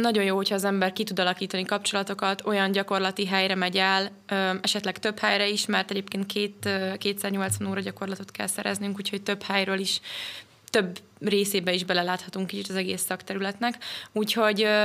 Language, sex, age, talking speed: Hungarian, female, 20-39, 155 wpm